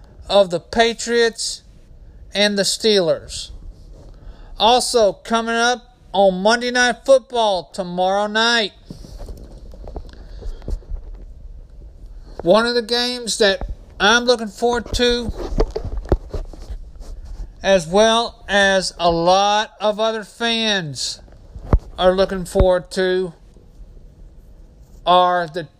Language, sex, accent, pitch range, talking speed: English, male, American, 170-220 Hz, 90 wpm